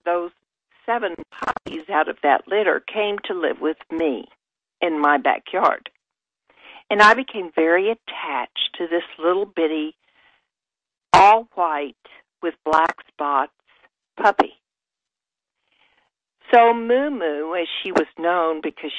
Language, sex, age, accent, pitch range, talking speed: English, female, 60-79, American, 160-235 Hz, 115 wpm